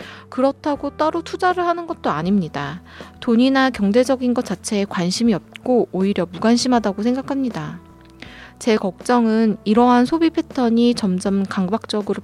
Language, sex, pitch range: Korean, female, 195-270 Hz